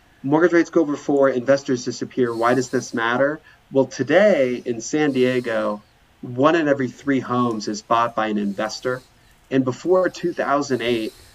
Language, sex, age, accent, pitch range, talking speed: English, male, 30-49, American, 115-135 Hz, 155 wpm